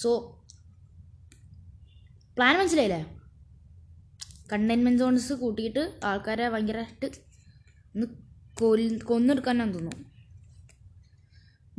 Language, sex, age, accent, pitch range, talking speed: Malayalam, female, 20-39, native, 205-300 Hz, 65 wpm